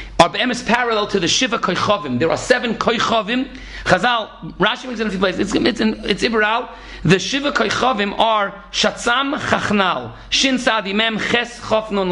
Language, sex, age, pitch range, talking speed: English, male, 40-59, 185-250 Hz, 170 wpm